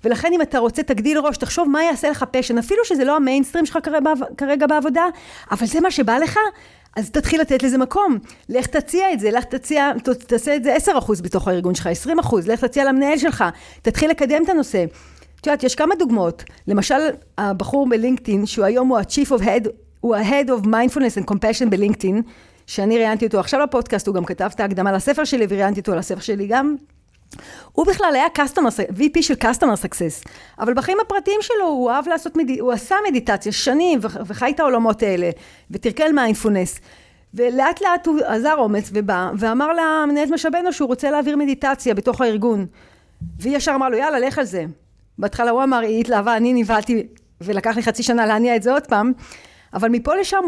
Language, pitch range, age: Hebrew, 220-300 Hz, 40-59